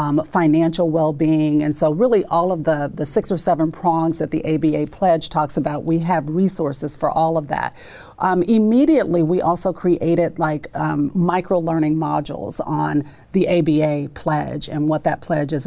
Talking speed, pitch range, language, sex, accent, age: 175 wpm, 155-190 Hz, English, female, American, 40-59